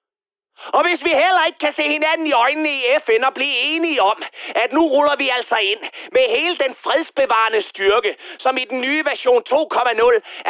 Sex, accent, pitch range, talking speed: male, native, 240-380 Hz, 190 wpm